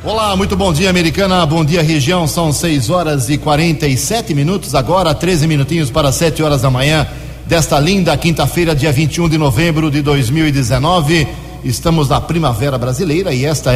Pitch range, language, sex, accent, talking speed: 135-165 Hz, Portuguese, male, Brazilian, 160 wpm